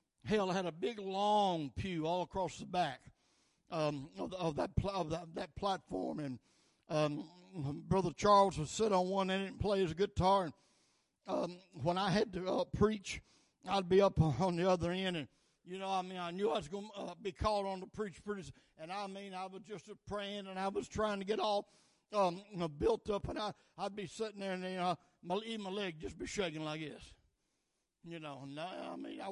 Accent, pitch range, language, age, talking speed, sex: American, 165-205 Hz, English, 60-79, 225 wpm, male